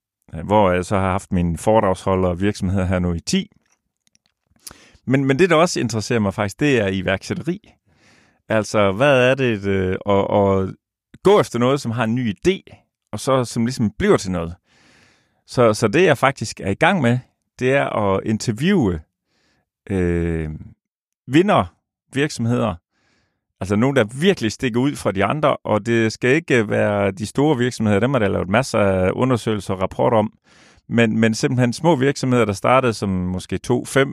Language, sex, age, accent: Danish, male, 30-49, native